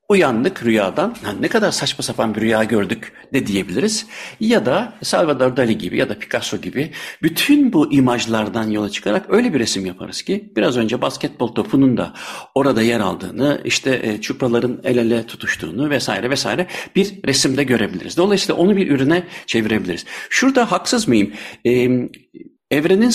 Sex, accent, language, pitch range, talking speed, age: male, native, Turkish, 115-175 Hz, 150 wpm, 60-79